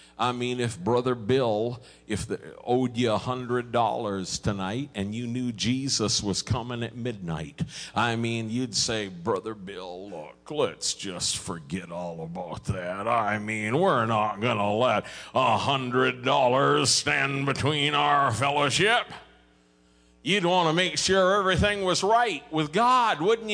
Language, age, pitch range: English, 50-69, 85-135 Hz